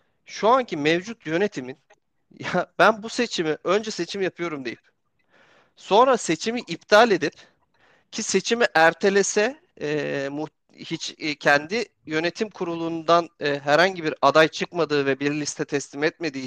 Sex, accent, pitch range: male, native, 145-205 Hz